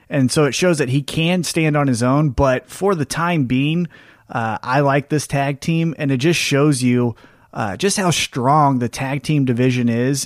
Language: English